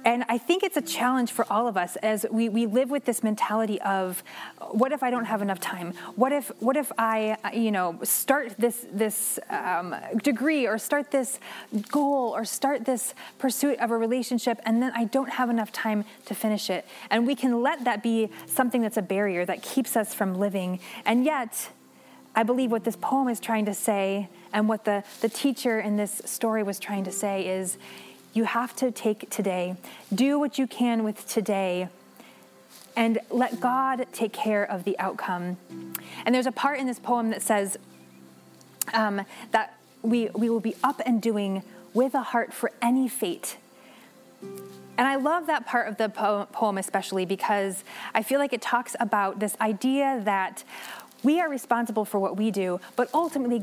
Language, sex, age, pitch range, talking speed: English, female, 20-39, 200-250 Hz, 190 wpm